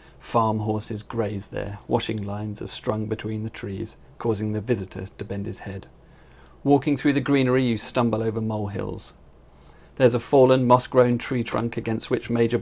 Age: 40-59